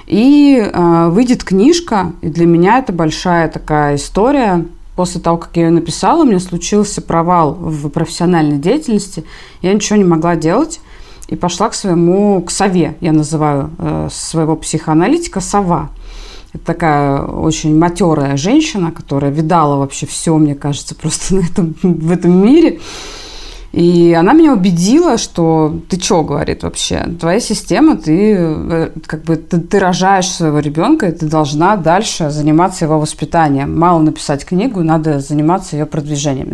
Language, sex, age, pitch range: Russian, female, 20-39, 155-185 Hz